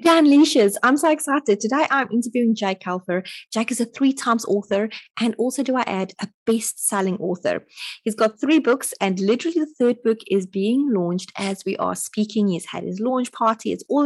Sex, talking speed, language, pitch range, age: female, 190 wpm, English, 180-225 Hz, 20-39